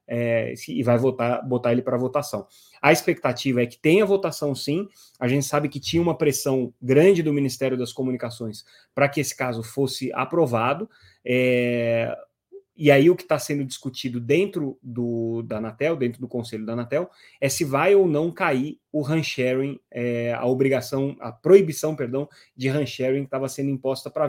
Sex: male